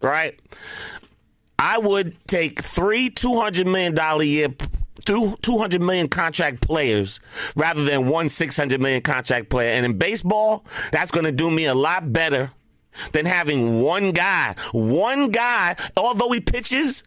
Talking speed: 145 wpm